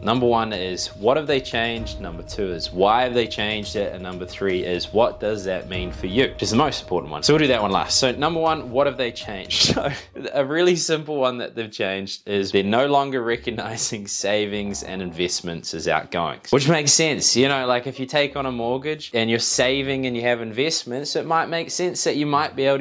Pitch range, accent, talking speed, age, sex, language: 100-135 Hz, Australian, 235 wpm, 20-39, male, English